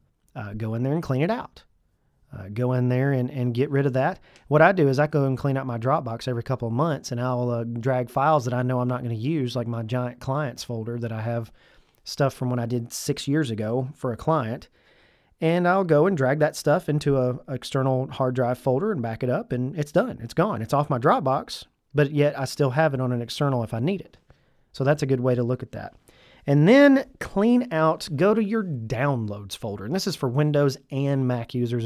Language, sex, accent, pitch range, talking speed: English, male, American, 125-150 Hz, 245 wpm